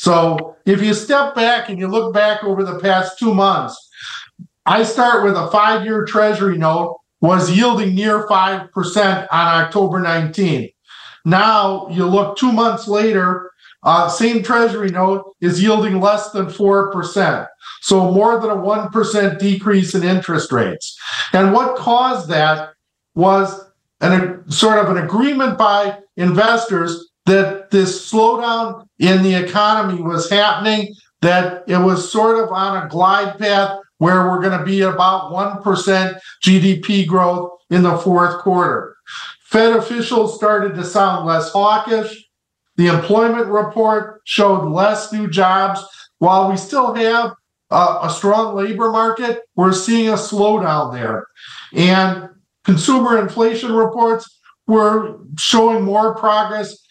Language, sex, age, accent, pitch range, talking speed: English, male, 50-69, American, 185-220 Hz, 135 wpm